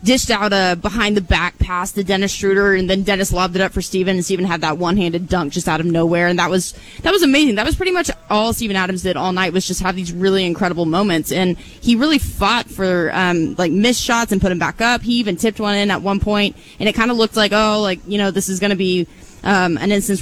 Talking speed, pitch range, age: 275 wpm, 180-225 Hz, 20-39